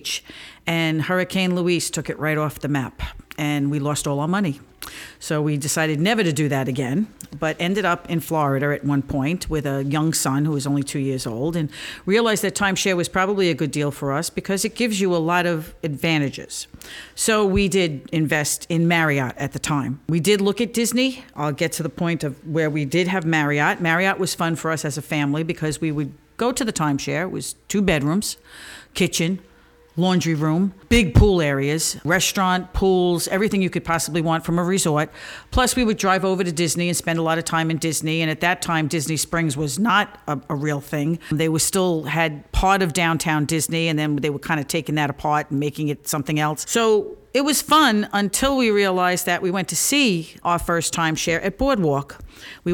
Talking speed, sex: 215 wpm, female